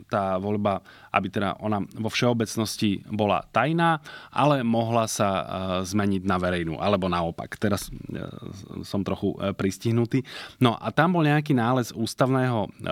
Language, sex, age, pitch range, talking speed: Slovak, male, 30-49, 100-125 Hz, 130 wpm